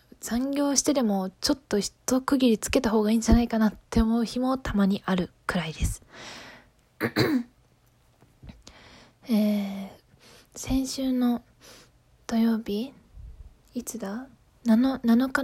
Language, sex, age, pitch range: Japanese, female, 20-39, 205-255 Hz